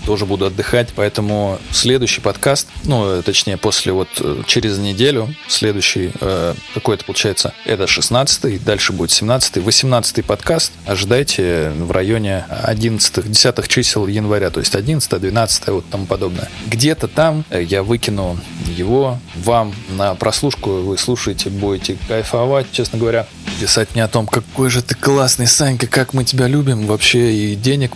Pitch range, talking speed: 95-125 Hz, 145 wpm